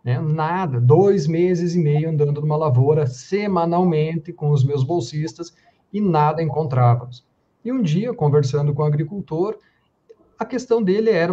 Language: Portuguese